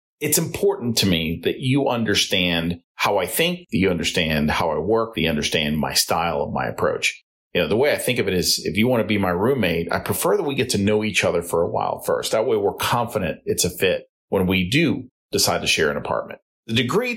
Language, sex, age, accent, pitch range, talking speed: English, male, 40-59, American, 90-130 Hz, 245 wpm